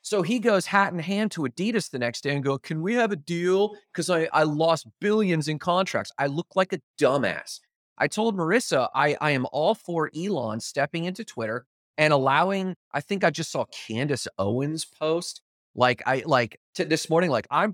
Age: 30-49